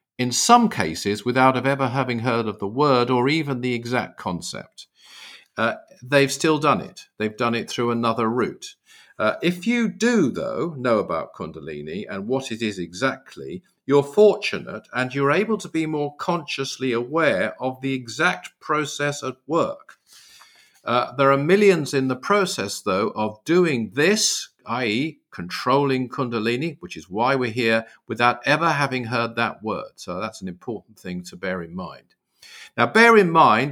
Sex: male